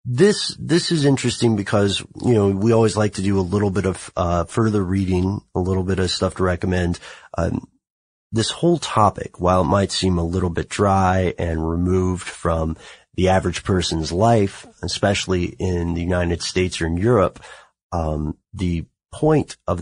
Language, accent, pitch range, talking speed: English, American, 85-110 Hz, 175 wpm